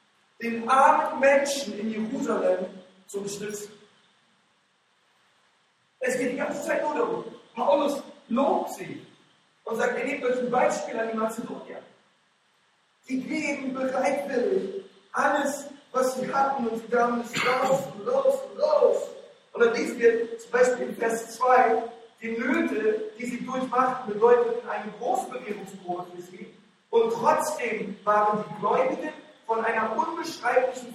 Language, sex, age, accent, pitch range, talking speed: German, male, 40-59, German, 220-275 Hz, 130 wpm